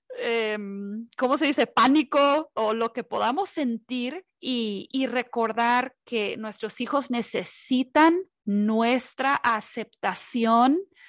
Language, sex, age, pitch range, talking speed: Spanish, female, 40-59, 225-285 Hz, 105 wpm